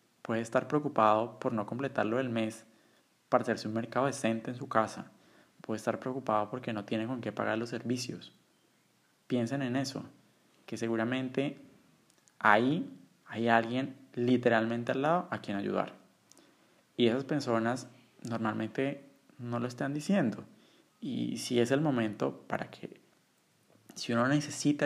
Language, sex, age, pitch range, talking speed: Spanish, male, 20-39, 110-135 Hz, 150 wpm